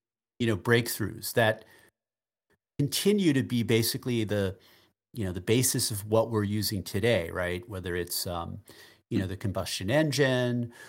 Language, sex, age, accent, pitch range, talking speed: English, male, 40-59, American, 105-135 Hz, 150 wpm